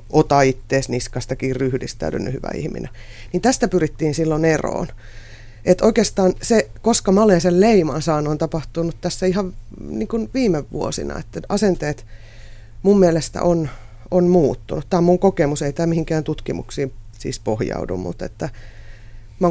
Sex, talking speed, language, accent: female, 140 wpm, Finnish, native